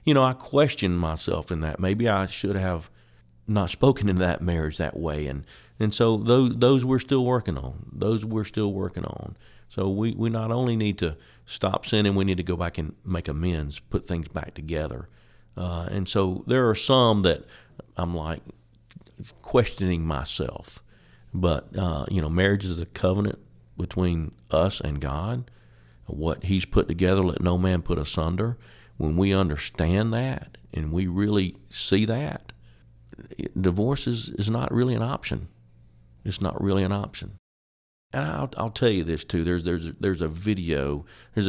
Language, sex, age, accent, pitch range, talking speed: English, male, 50-69, American, 85-110 Hz, 175 wpm